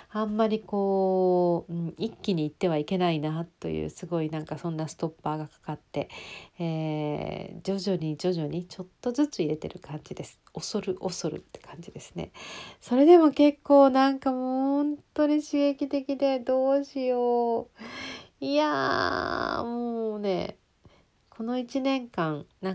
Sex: female